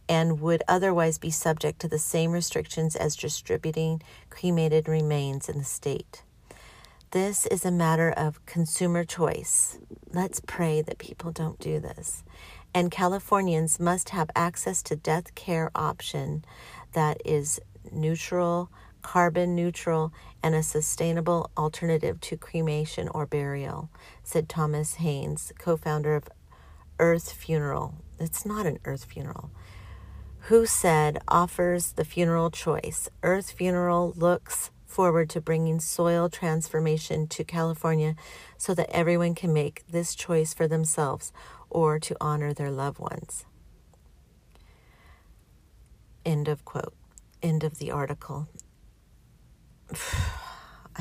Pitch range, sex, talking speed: 150-170 Hz, female, 120 wpm